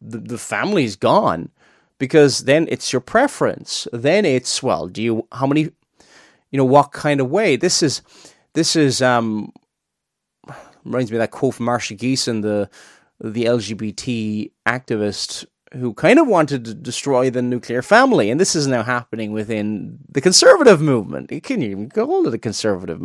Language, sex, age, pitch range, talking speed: English, male, 30-49, 115-165 Hz, 165 wpm